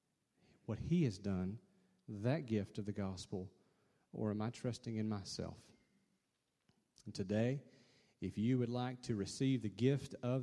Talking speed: 150 wpm